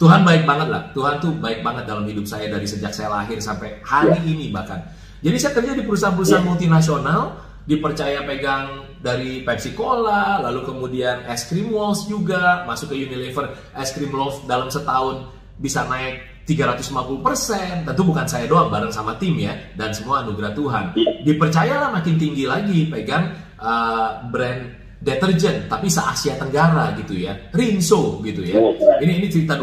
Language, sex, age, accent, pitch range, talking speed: Indonesian, male, 30-49, native, 130-175 Hz, 160 wpm